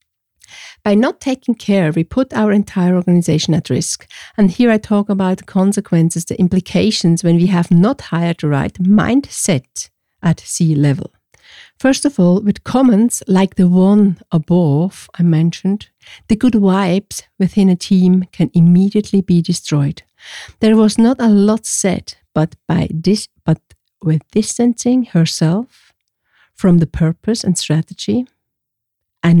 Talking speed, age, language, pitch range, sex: 145 wpm, 50-69, English, 175-220 Hz, female